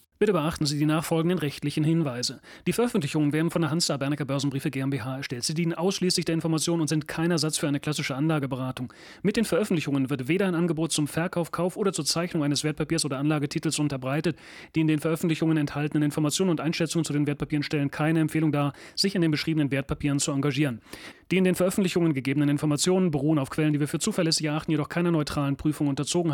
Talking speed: 205 wpm